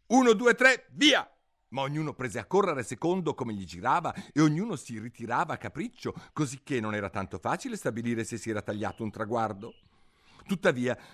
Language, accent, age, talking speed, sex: Italian, native, 50-69, 170 wpm, male